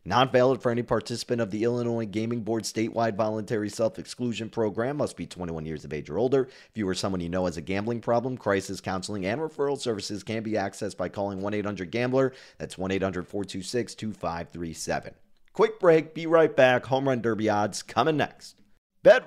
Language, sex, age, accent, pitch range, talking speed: English, male, 30-49, American, 105-150 Hz, 195 wpm